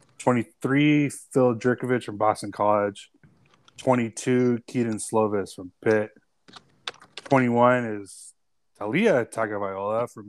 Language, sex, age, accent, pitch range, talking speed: English, male, 20-39, American, 105-130 Hz, 95 wpm